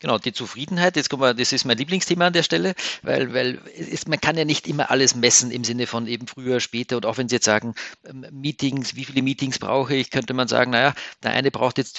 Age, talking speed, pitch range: 40-59, 240 wpm, 115-145 Hz